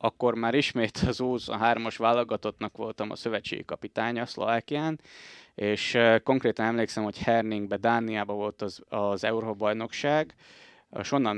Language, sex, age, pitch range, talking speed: Hungarian, male, 20-39, 105-120 Hz, 130 wpm